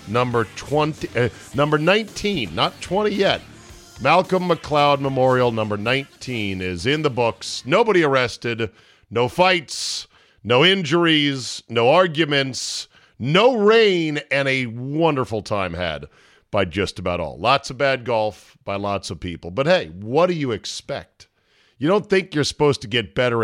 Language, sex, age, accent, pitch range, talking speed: English, male, 50-69, American, 105-145 Hz, 150 wpm